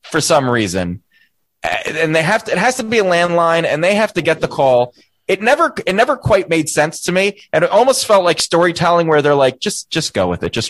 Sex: male